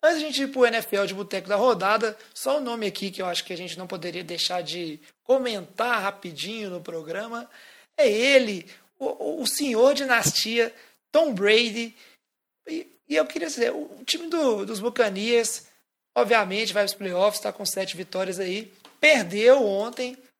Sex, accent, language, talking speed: male, Brazilian, Portuguese, 175 wpm